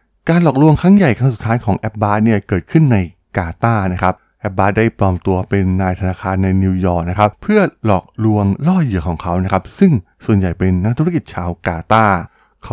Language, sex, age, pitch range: Thai, male, 20-39, 90-115 Hz